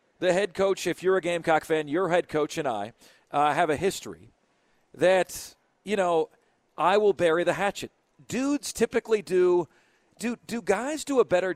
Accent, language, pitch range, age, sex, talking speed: American, English, 160-195 Hz, 40-59, male, 180 wpm